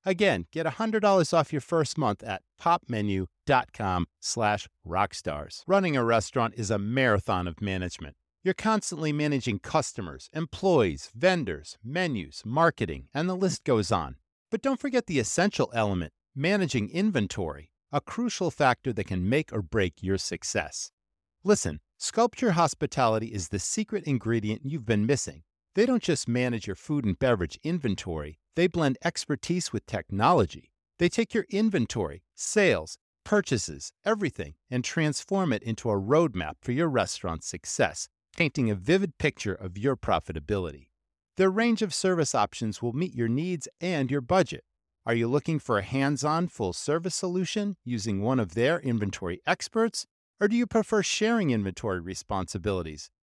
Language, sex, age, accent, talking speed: English, male, 50-69, American, 150 wpm